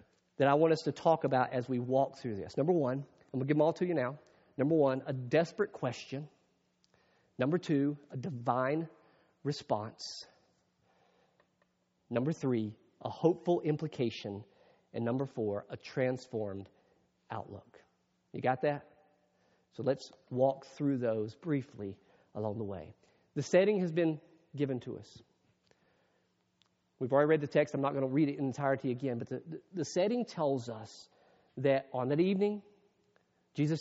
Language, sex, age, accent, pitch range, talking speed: English, male, 40-59, American, 130-170 Hz, 155 wpm